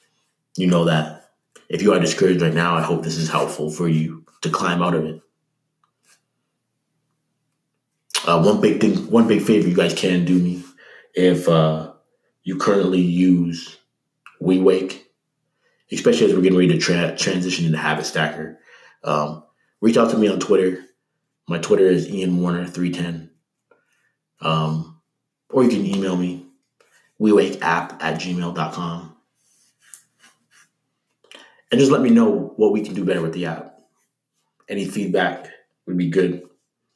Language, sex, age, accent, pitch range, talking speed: English, male, 30-49, American, 80-95 Hz, 145 wpm